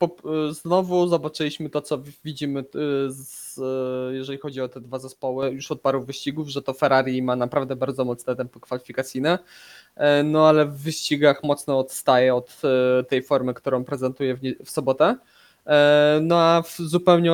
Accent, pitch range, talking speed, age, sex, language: native, 130-145 Hz, 140 wpm, 20-39, male, Polish